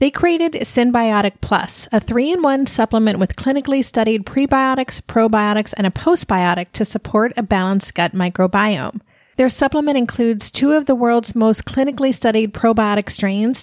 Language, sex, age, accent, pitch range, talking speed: English, female, 40-59, American, 200-260 Hz, 145 wpm